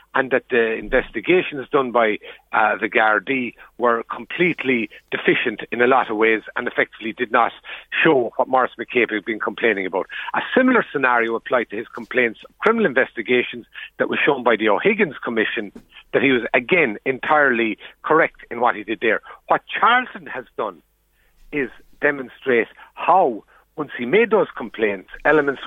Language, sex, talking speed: English, male, 165 wpm